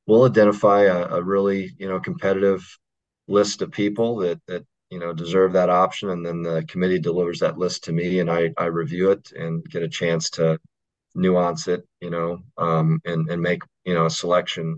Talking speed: 200 wpm